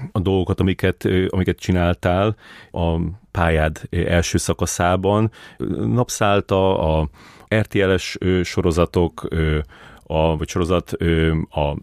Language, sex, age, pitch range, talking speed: Hungarian, male, 30-49, 85-95 Hz, 85 wpm